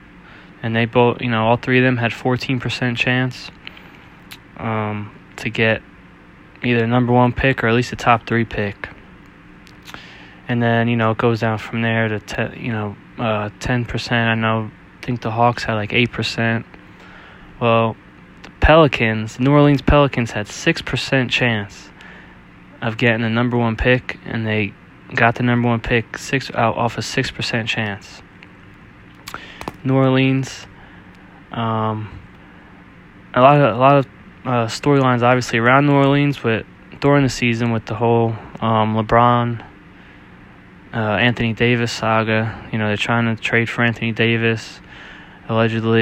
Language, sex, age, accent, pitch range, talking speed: English, male, 20-39, American, 110-120 Hz, 155 wpm